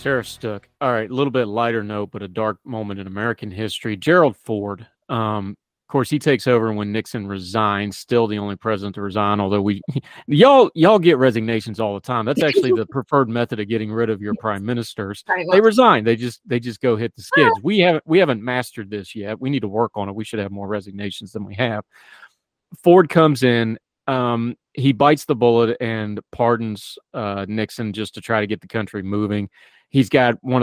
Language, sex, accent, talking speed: English, male, American, 210 wpm